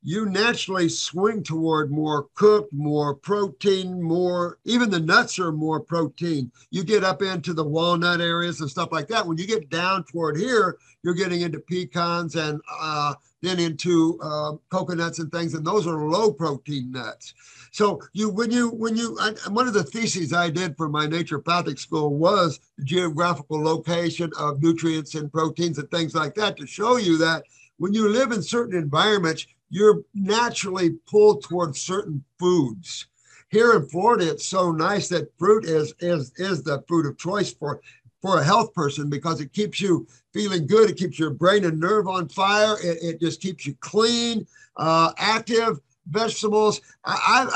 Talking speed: 175 wpm